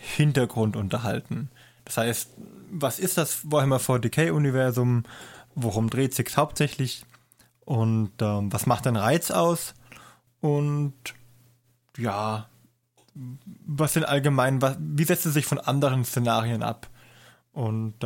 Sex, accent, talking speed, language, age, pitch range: male, German, 125 wpm, German, 20-39, 120-150 Hz